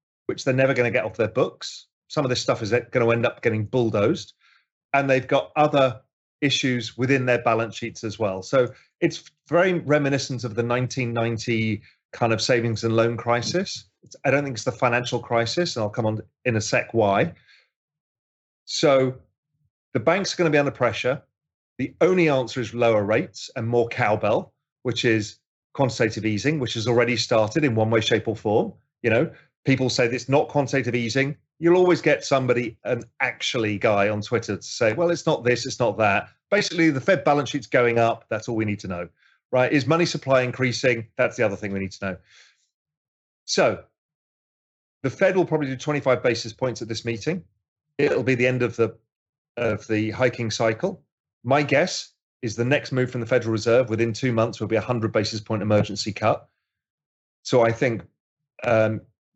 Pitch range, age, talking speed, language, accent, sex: 115-140 Hz, 30-49, 190 wpm, English, British, male